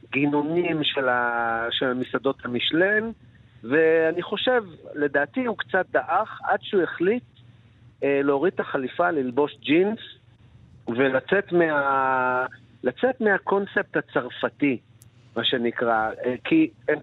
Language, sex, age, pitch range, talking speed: Hebrew, male, 50-69, 120-165 Hz, 90 wpm